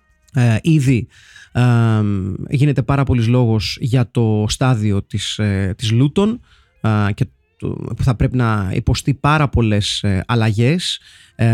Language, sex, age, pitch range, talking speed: Greek, male, 30-49, 115-150 Hz, 100 wpm